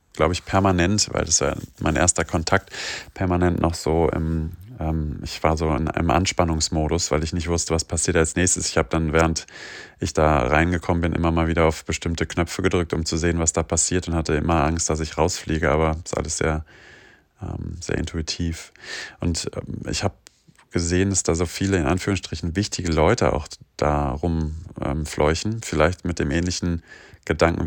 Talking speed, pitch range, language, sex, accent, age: 185 wpm, 80-90 Hz, German, male, German, 30-49